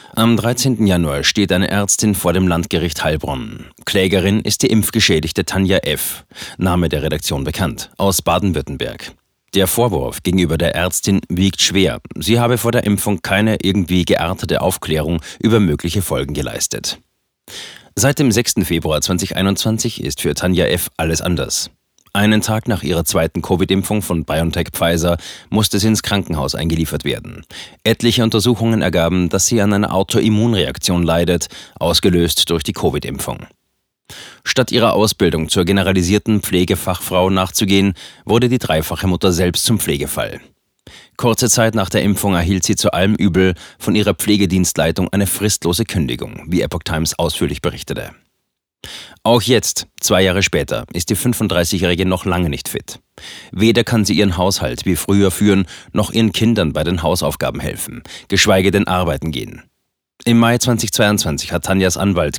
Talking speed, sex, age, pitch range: 145 wpm, male, 30-49, 85-105 Hz